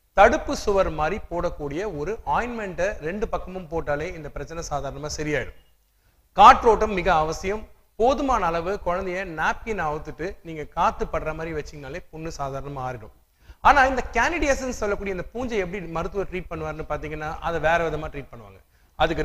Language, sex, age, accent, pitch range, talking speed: Tamil, male, 30-49, native, 150-200 Hz, 145 wpm